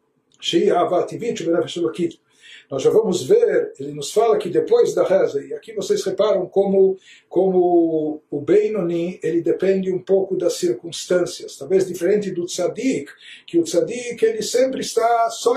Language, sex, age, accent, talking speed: Portuguese, male, 60-79, Brazilian, 145 wpm